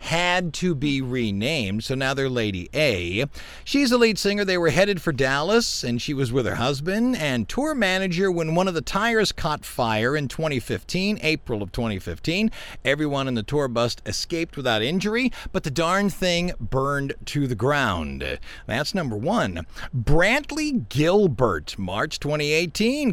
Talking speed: 160 wpm